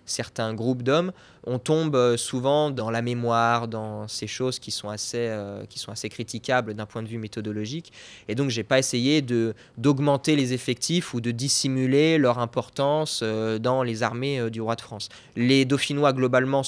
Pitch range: 115-150 Hz